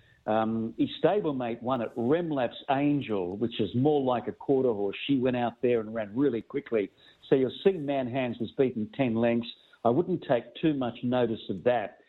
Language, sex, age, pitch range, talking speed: English, male, 50-69, 120-150 Hz, 195 wpm